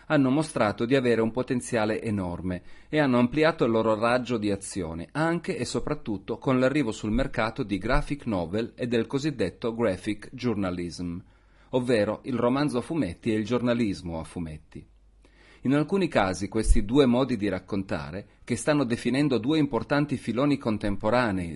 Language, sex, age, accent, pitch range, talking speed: Italian, male, 40-59, native, 95-130 Hz, 155 wpm